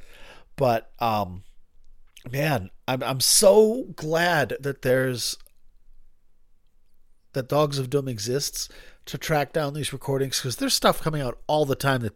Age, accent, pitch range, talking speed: 40-59, American, 110-150 Hz, 140 wpm